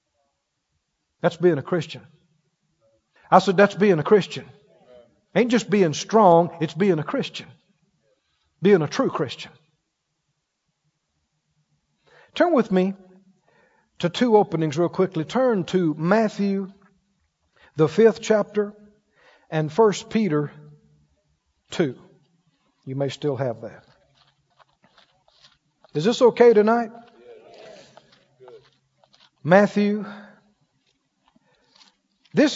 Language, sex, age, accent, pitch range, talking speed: English, male, 50-69, American, 160-210 Hz, 95 wpm